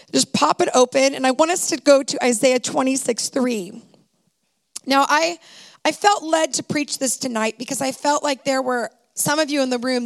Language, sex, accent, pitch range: English, female, American, 245-300 Hz